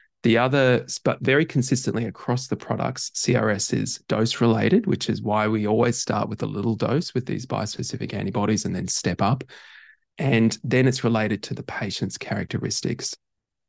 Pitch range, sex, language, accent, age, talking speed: 100-120 Hz, male, English, Australian, 20-39, 165 wpm